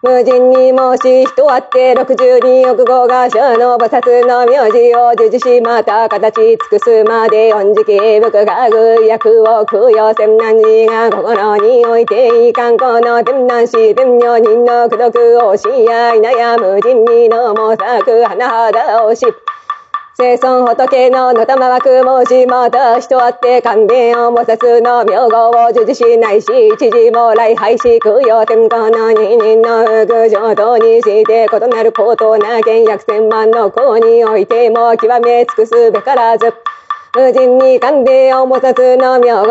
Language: Japanese